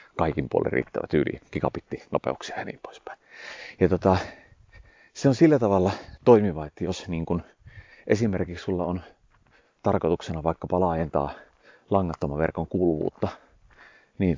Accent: native